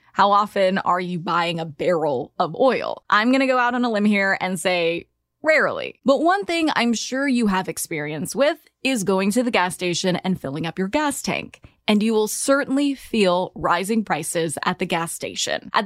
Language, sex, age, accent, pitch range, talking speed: English, female, 20-39, American, 180-250 Hz, 205 wpm